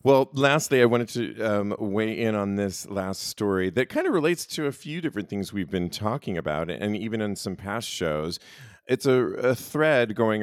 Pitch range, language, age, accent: 95-125 Hz, English, 40-59, American